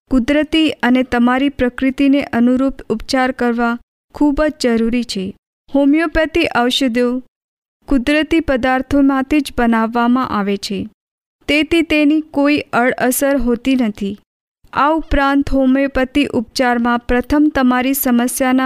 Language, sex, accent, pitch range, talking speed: Hindi, female, native, 240-280 Hz, 75 wpm